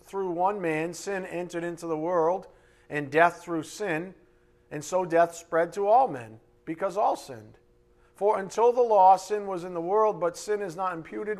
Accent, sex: American, male